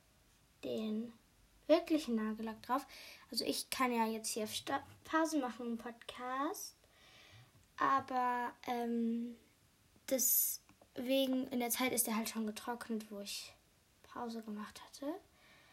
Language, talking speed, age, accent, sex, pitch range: German, 120 wpm, 20-39, German, female, 230-280 Hz